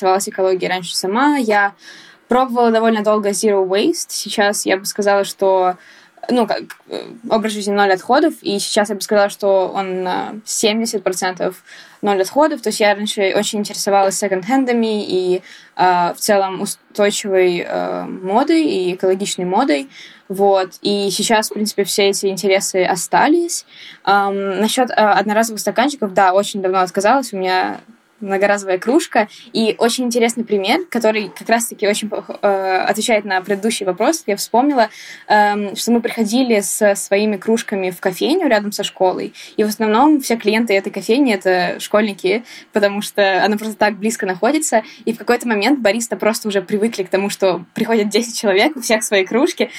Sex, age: female, 10-29